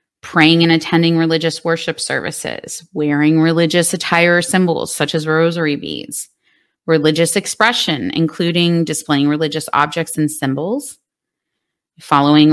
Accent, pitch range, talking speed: American, 145-175 Hz, 115 wpm